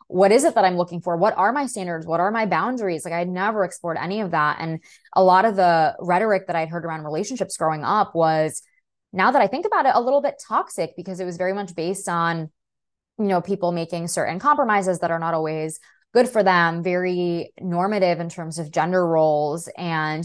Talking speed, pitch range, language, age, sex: 220 wpm, 165-195 Hz, English, 20-39, female